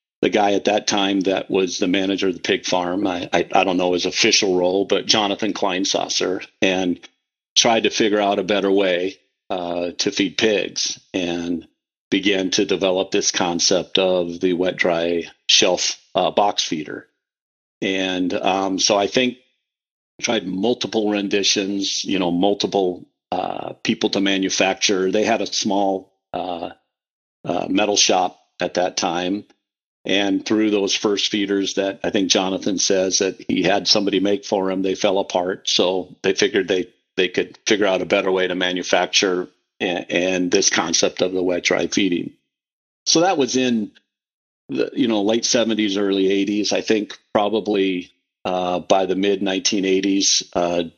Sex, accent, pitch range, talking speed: male, American, 90-100 Hz, 160 wpm